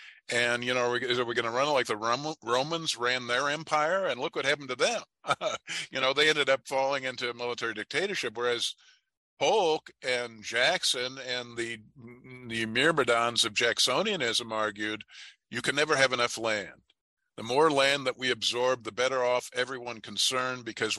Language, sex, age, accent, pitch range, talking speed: English, male, 50-69, American, 115-135 Hz, 175 wpm